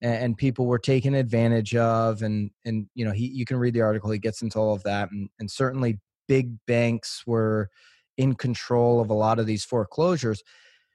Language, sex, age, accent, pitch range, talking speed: English, male, 30-49, American, 110-135 Hz, 195 wpm